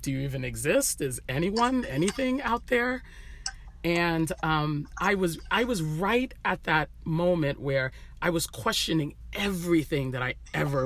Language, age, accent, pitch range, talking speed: English, 40-59, American, 125-165 Hz, 150 wpm